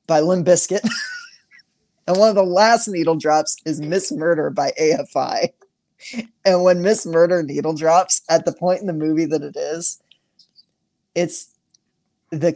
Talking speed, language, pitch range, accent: 155 wpm, English, 150-180 Hz, American